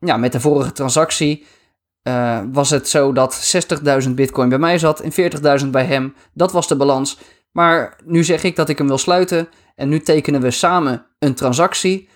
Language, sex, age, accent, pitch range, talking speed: Dutch, male, 20-39, Dutch, 130-170 Hz, 190 wpm